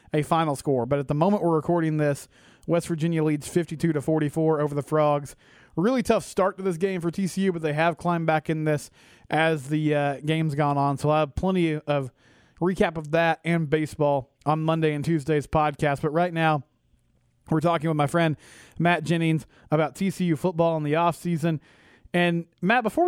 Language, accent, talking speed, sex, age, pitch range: English, American, 190 wpm, male, 30-49, 140-170 Hz